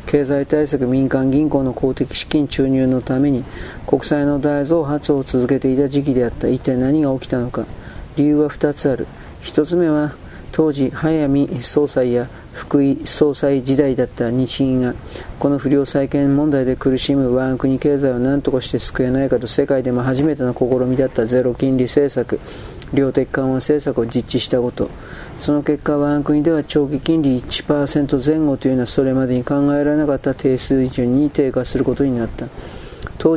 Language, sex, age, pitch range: Japanese, male, 40-59, 125-145 Hz